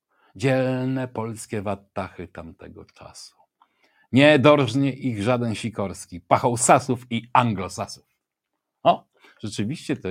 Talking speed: 105 wpm